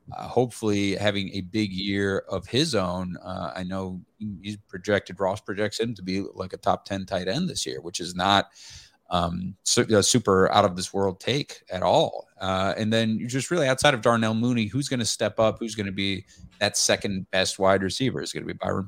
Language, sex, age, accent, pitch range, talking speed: English, male, 30-49, American, 95-110 Hz, 225 wpm